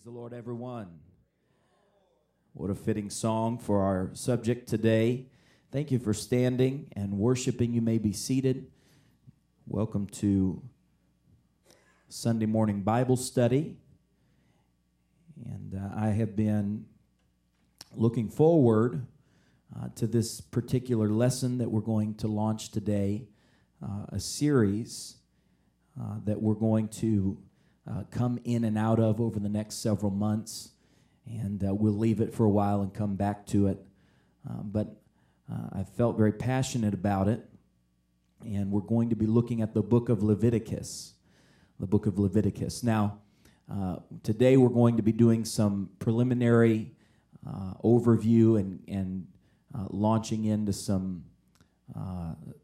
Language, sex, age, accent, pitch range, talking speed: English, male, 40-59, American, 100-115 Hz, 135 wpm